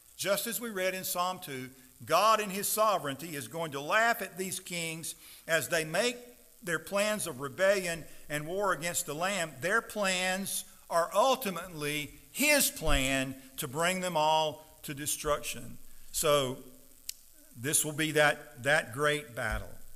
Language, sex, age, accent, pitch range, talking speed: English, male, 50-69, American, 135-185 Hz, 150 wpm